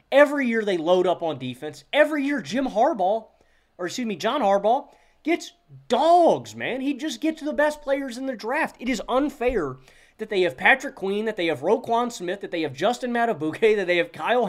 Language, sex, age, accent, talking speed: English, male, 30-49, American, 205 wpm